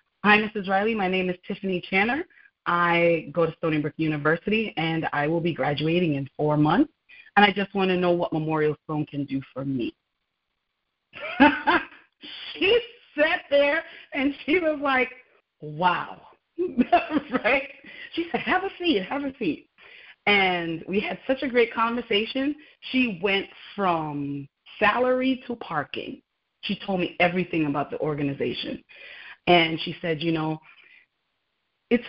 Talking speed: 145 wpm